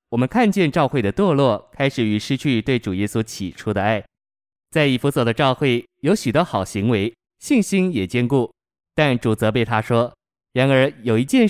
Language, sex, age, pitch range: Chinese, male, 20-39, 110-145 Hz